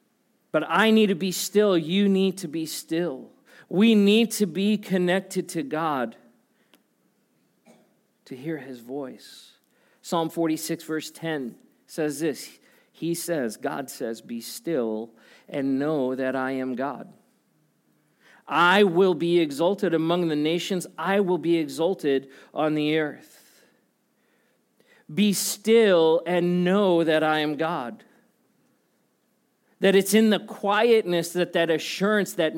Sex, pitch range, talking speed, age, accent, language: male, 160-200 Hz, 130 wpm, 40-59, American, English